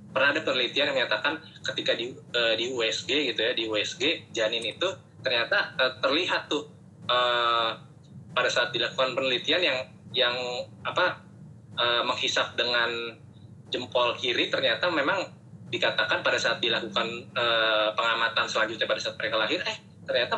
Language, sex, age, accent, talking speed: Indonesian, male, 20-39, native, 140 wpm